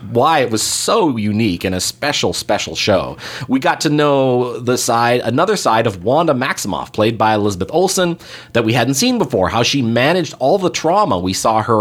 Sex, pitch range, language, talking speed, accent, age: male, 100-130 Hz, English, 200 wpm, American, 30-49